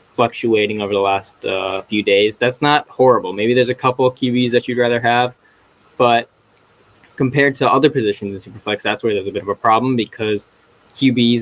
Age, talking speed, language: 10-29, 195 wpm, English